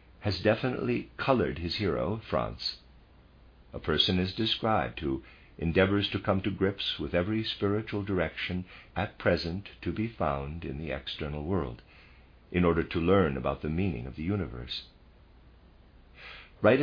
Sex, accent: male, American